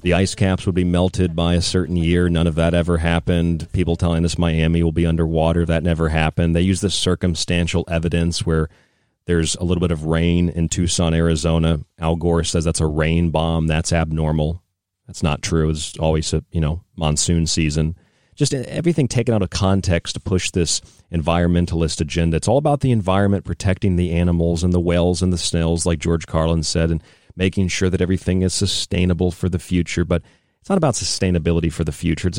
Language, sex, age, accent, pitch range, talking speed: English, male, 40-59, American, 85-95 Hz, 200 wpm